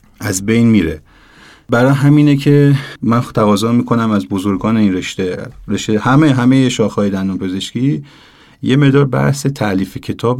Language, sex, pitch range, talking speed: Persian, male, 100-125 Hz, 140 wpm